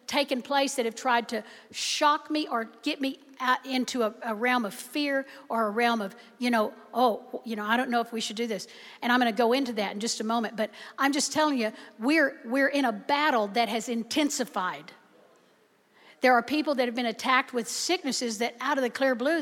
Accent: American